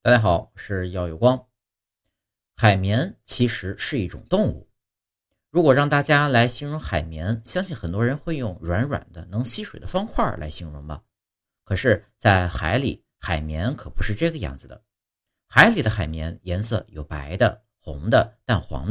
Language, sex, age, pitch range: Chinese, male, 50-69, 90-120 Hz